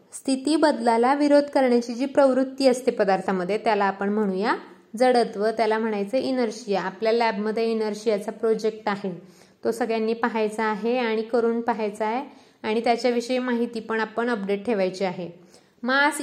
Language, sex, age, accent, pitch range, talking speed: Marathi, female, 20-39, native, 205-245 Hz, 135 wpm